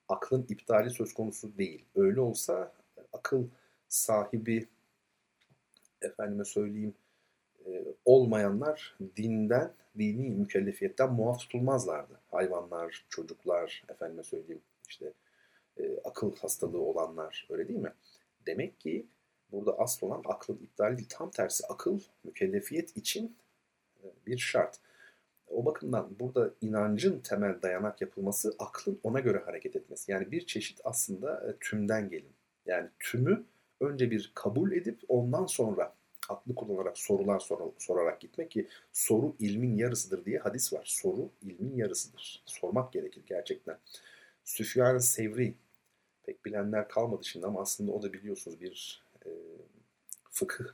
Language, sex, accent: Turkish, male, native